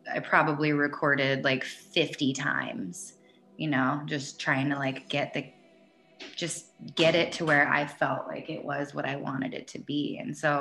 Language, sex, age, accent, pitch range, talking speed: English, female, 20-39, American, 140-160 Hz, 180 wpm